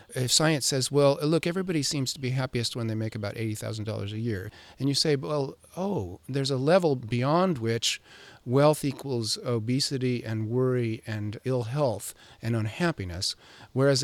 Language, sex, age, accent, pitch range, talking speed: English, male, 40-59, American, 110-145 Hz, 160 wpm